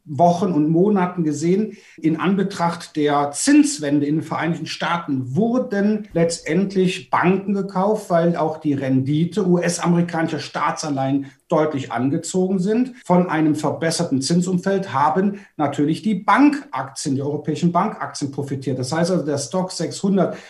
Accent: German